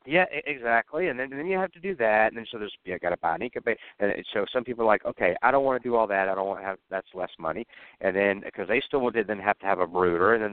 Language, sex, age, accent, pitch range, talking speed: English, male, 50-69, American, 90-115 Hz, 310 wpm